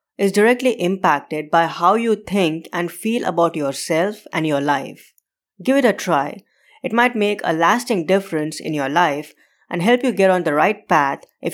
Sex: female